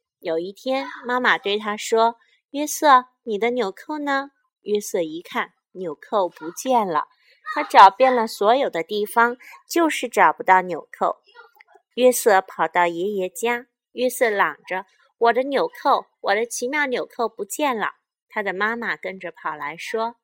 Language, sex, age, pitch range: Chinese, female, 30-49, 200-275 Hz